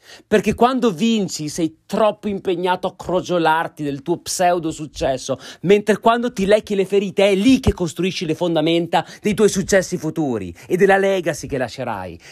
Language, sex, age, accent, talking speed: Italian, male, 30-49, native, 160 wpm